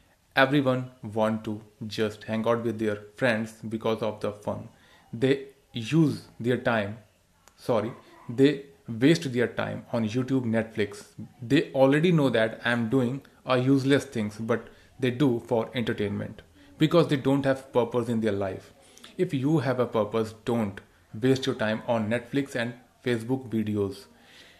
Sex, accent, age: male, native, 30-49